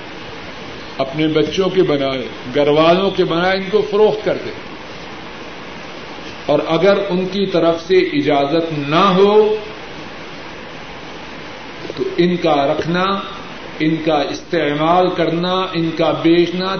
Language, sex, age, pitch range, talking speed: Urdu, male, 50-69, 160-195 Hz, 115 wpm